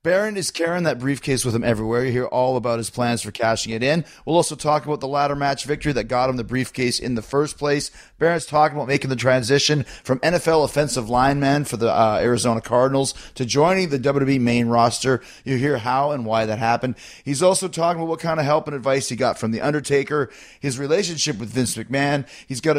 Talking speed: 225 wpm